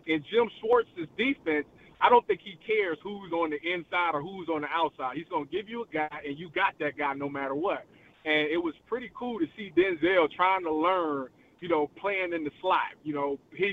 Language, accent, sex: English, American, male